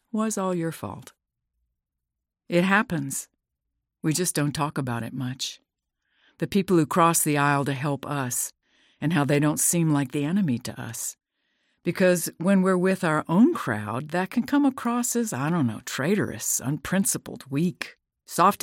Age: 50-69